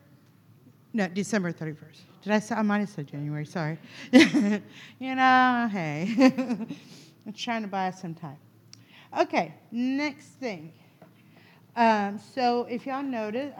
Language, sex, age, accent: English, female, 50-69, American